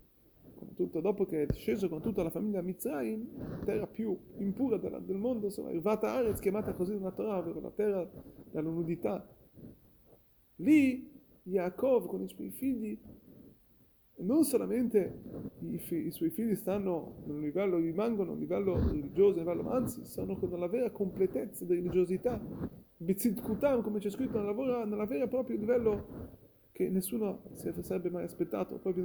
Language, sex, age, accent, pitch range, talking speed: Italian, male, 30-49, native, 185-260 Hz, 155 wpm